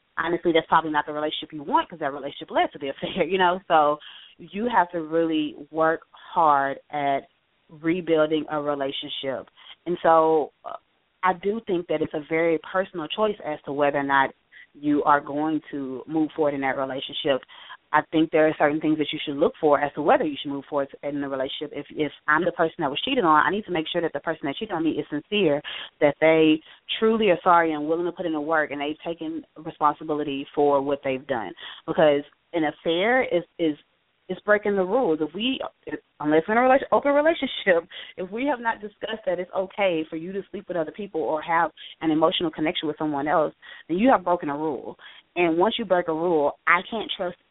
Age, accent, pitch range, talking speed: 30-49, American, 145-175 Hz, 220 wpm